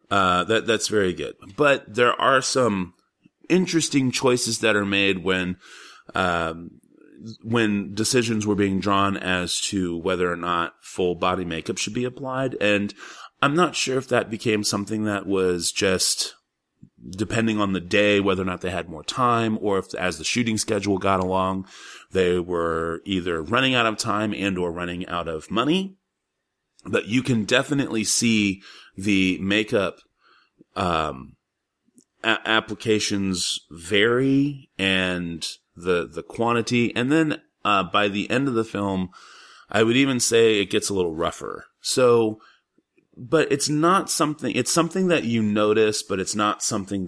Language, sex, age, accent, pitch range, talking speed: English, male, 30-49, American, 95-120 Hz, 155 wpm